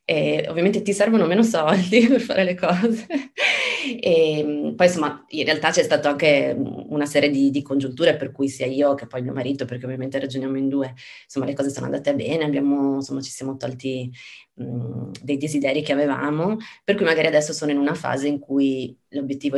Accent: native